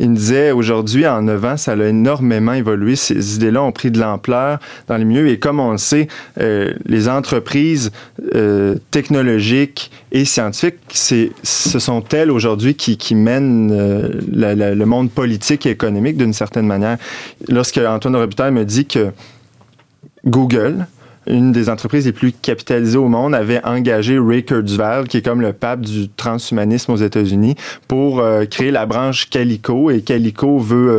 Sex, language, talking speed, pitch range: male, French, 170 wpm, 110-130 Hz